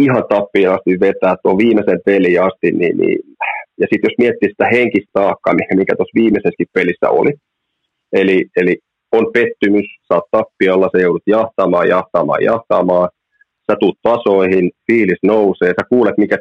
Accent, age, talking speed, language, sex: native, 30-49, 145 wpm, Finnish, male